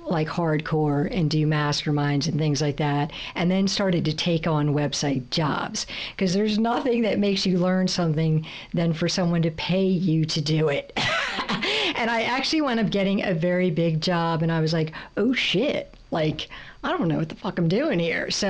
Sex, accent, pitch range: female, American, 170-220 Hz